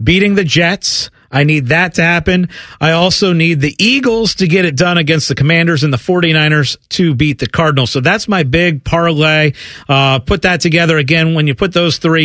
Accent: American